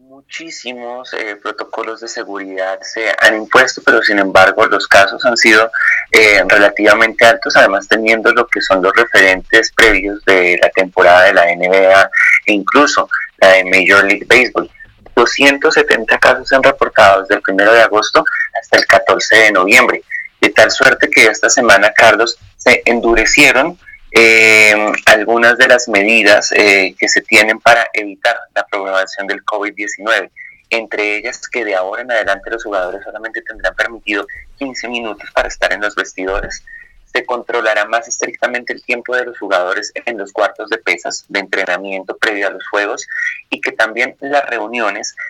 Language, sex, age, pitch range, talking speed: English, male, 30-49, 100-135 Hz, 160 wpm